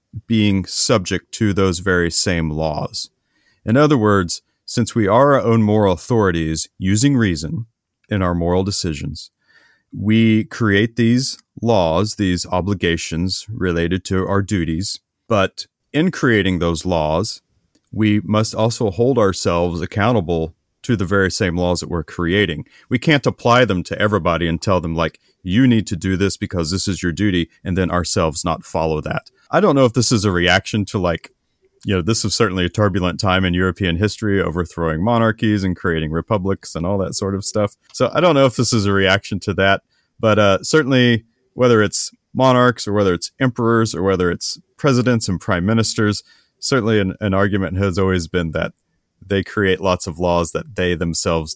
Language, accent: English, American